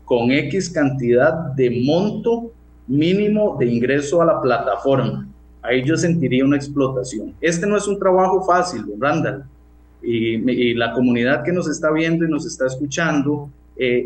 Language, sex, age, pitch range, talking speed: Spanish, male, 30-49, 125-170 Hz, 155 wpm